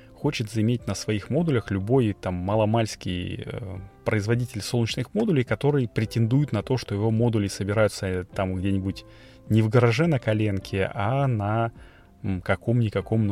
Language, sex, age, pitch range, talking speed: Russian, male, 20-39, 100-125 Hz, 145 wpm